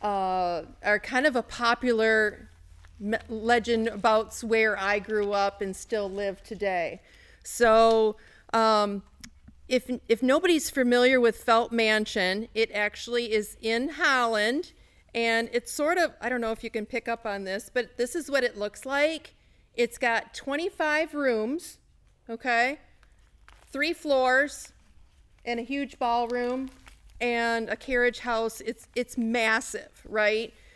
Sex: female